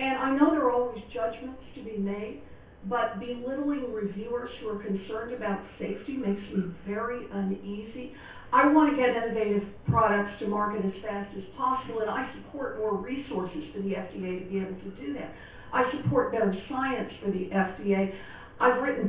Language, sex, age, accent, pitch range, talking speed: English, female, 50-69, American, 200-245 Hz, 180 wpm